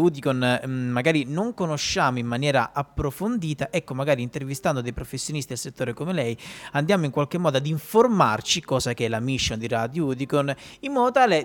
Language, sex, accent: Italian, male, native